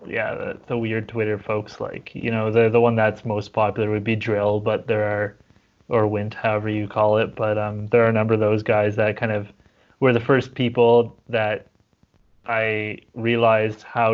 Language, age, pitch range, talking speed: English, 20-39, 105-120 Hz, 200 wpm